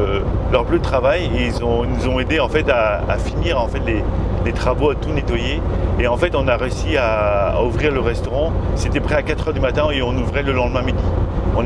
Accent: French